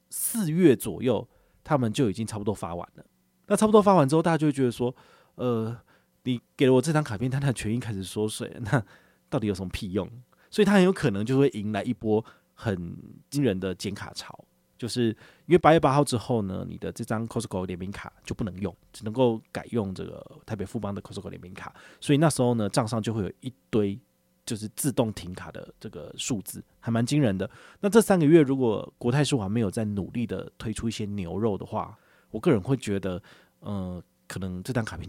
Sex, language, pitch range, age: male, Chinese, 100-140 Hz, 30-49